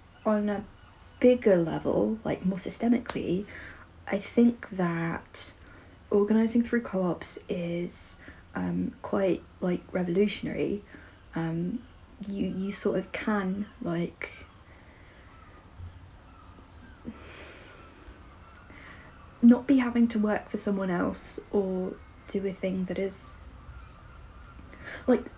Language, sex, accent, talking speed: English, female, British, 95 wpm